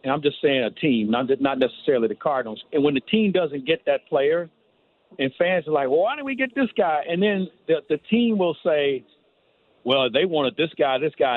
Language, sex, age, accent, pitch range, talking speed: English, male, 50-69, American, 130-180 Hz, 225 wpm